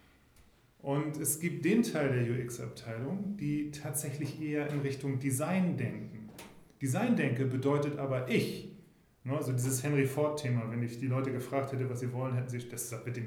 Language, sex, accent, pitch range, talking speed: German, male, German, 125-150 Hz, 170 wpm